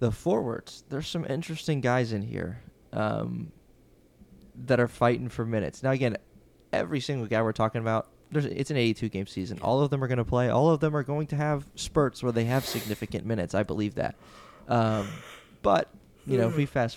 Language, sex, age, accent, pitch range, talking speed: English, male, 20-39, American, 105-130 Hz, 210 wpm